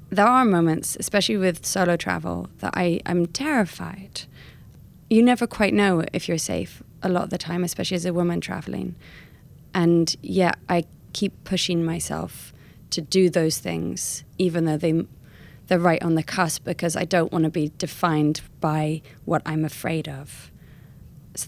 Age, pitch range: 20-39, 155-180 Hz